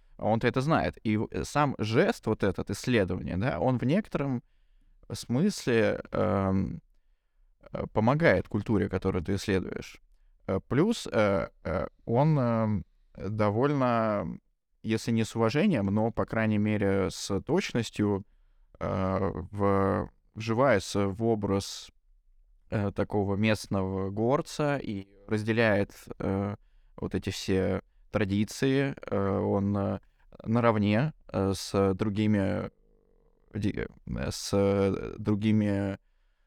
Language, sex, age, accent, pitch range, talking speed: Russian, male, 20-39, native, 95-115 Hz, 90 wpm